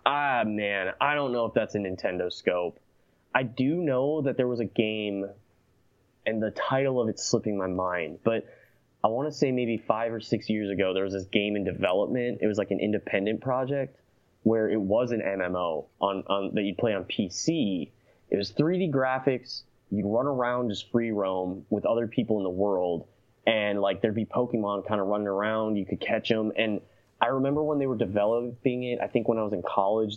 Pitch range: 100-125 Hz